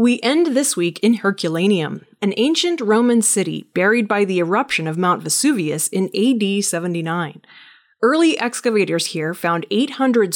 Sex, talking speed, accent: female, 145 wpm, American